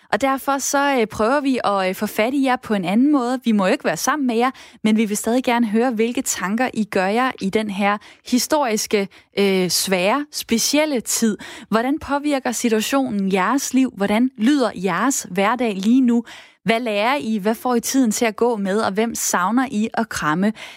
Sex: female